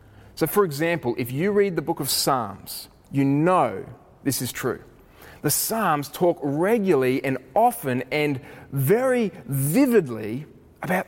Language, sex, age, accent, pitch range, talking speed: English, male, 30-49, Australian, 110-160 Hz, 135 wpm